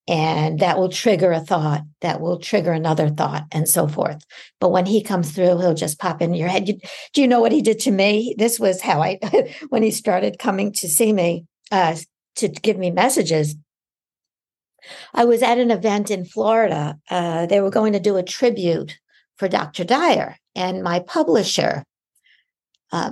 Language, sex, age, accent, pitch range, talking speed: English, female, 60-79, American, 175-215 Hz, 185 wpm